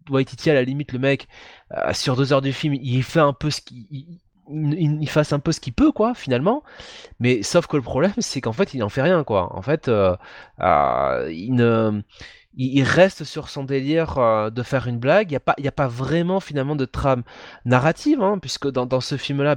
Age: 20-39